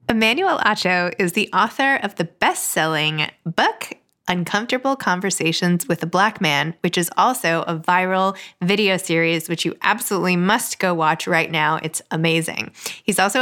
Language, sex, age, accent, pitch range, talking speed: English, female, 20-39, American, 170-220 Hz, 150 wpm